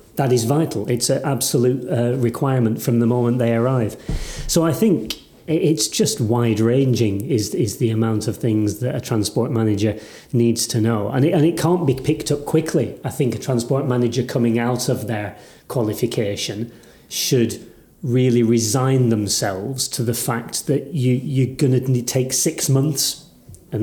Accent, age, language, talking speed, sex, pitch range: British, 30-49, English, 170 wpm, male, 120-140 Hz